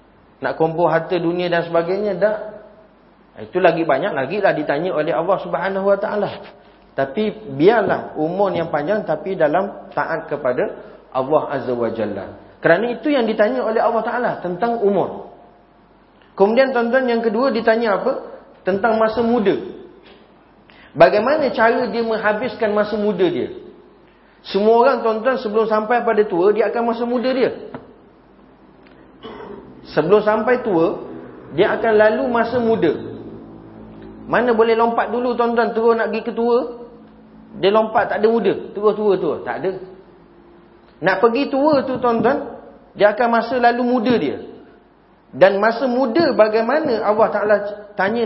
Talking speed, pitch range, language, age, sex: 140 wpm, 185-235 Hz, Malay, 40-59, male